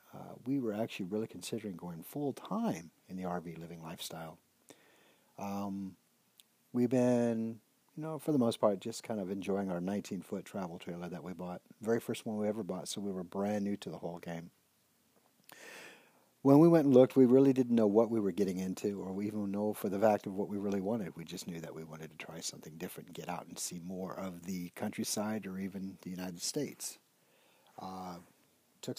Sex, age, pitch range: male, 50-69, 90-110 Hz